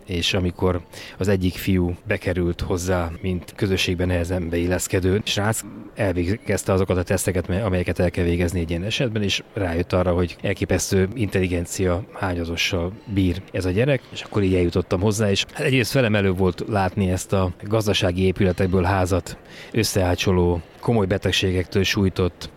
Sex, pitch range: male, 90-100 Hz